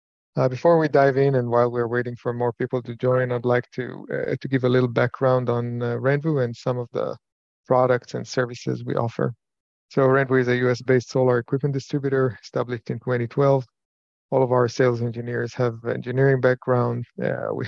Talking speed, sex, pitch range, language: 190 wpm, male, 120-135 Hz, English